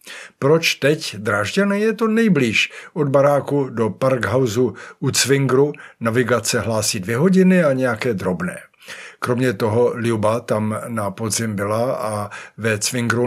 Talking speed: 130 wpm